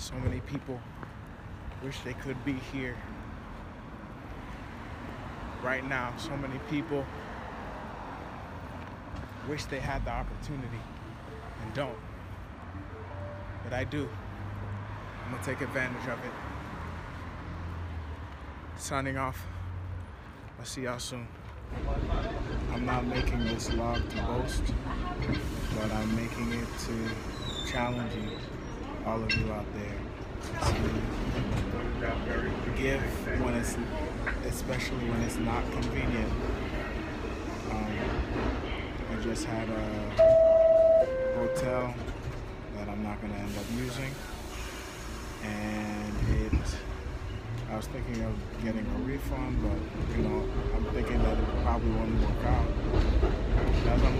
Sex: male